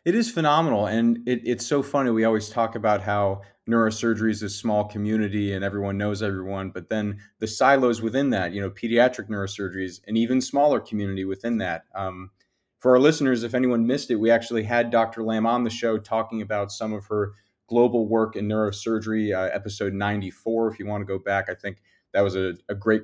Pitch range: 100-125 Hz